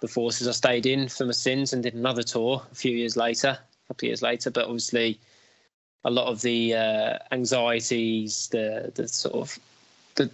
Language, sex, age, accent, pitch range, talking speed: English, male, 20-39, British, 115-130 Hz, 195 wpm